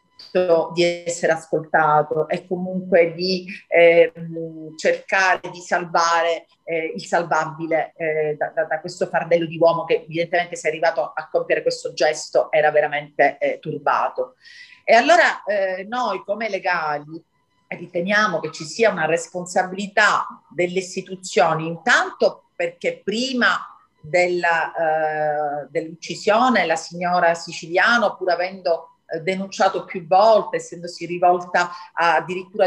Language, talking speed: Italian, 120 wpm